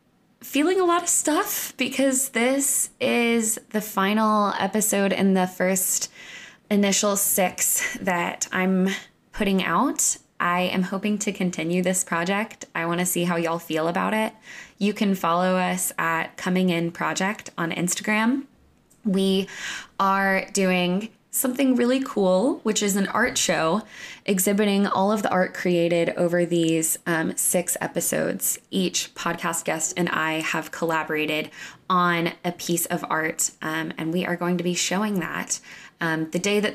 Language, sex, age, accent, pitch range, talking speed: English, female, 20-39, American, 170-215 Hz, 150 wpm